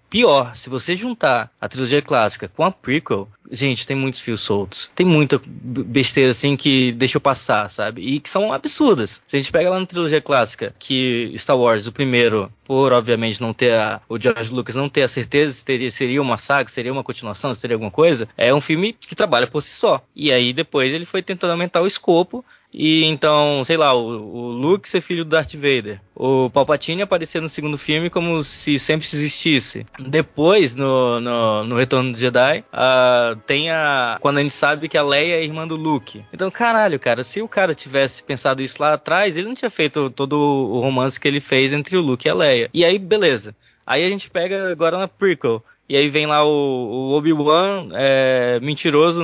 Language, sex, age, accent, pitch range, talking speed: Portuguese, male, 20-39, Brazilian, 125-160 Hz, 210 wpm